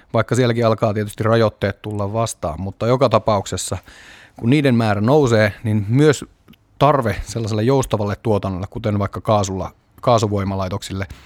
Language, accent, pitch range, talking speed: Finnish, native, 100-120 Hz, 130 wpm